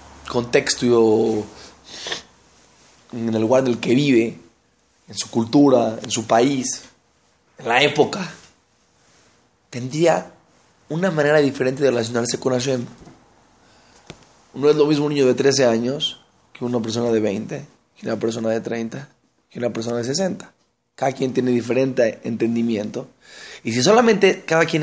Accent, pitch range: Mexican, 115-170 Hz